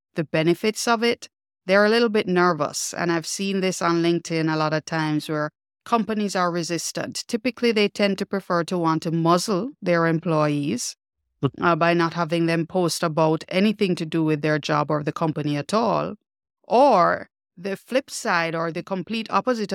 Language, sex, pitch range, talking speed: English, female, 160-205 Hz, 180 wpm